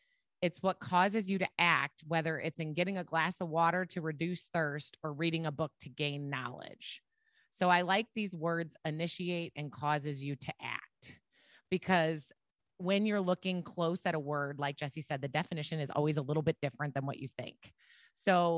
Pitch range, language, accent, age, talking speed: 150-180 Hz, English, American, 20-39, 190 wpm